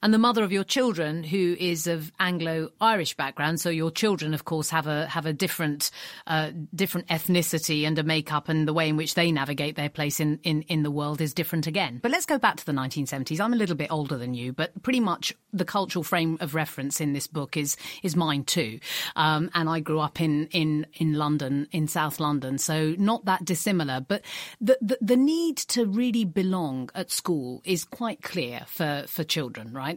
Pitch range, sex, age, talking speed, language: 155-190 Hz, female, 40-59, 210 wpm, English